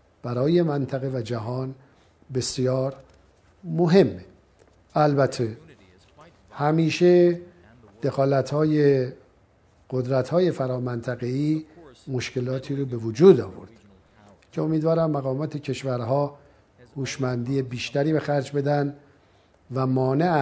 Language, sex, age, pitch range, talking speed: Persian, male, 50-69, 120-145 Hz, 75 wpm